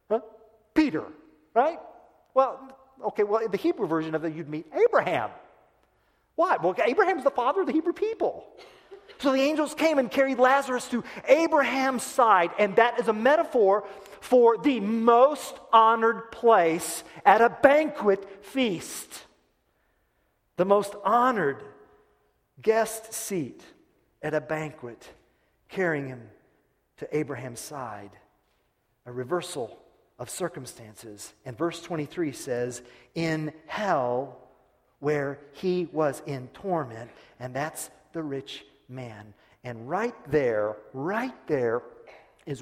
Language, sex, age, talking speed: English, male, 40-59, 120 wpm